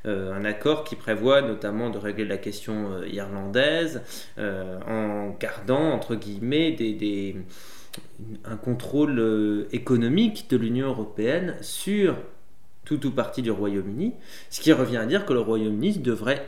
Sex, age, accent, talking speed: male, 20-39, French, 150 wpm